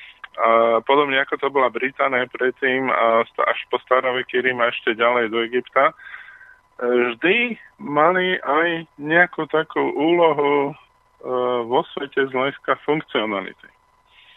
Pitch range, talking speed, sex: 120-145 Hz, 115 wpm, male